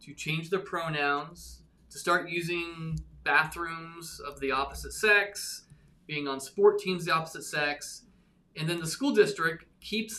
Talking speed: 155 wpm